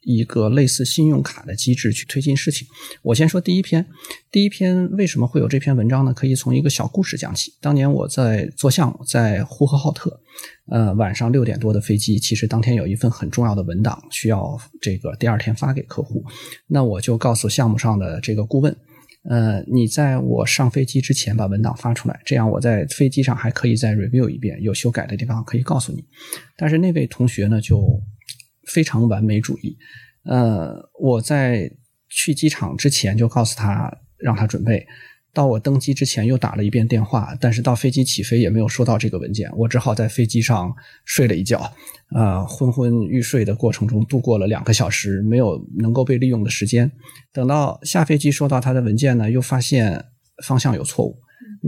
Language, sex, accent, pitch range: Chinese, male, native, 110-135 Hz